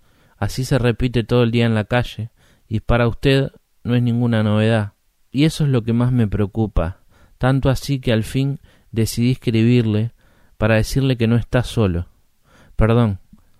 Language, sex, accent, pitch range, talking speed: Spanish, male, Argentinian, 100-125 Hz, 170 wpm